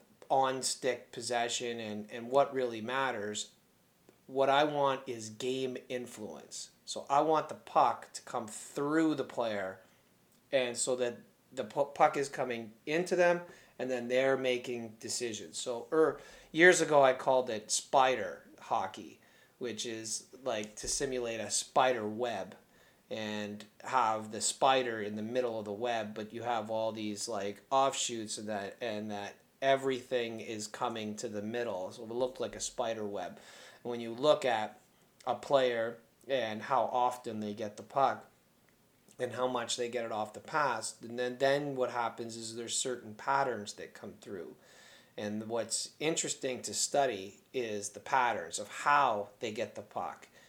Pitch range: 110-135 Hz